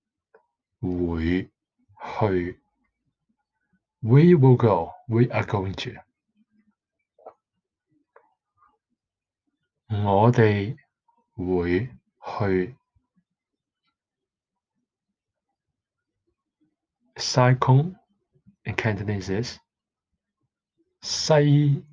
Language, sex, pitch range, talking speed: English, male, 100-155 Hz, 35 wpm